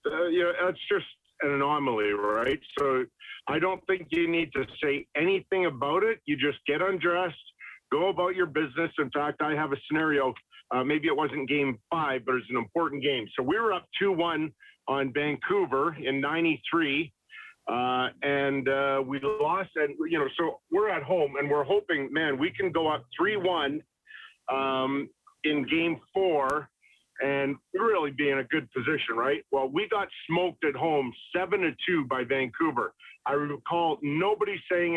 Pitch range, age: 135-175 Hz, 50-69